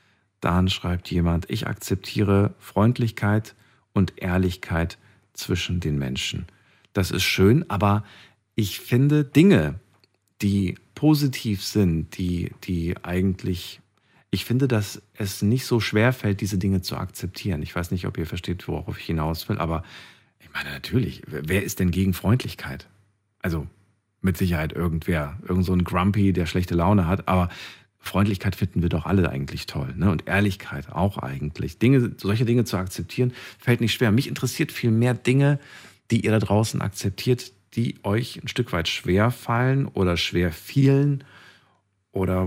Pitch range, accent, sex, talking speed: 90-115 Hz, German, male, 150 wpm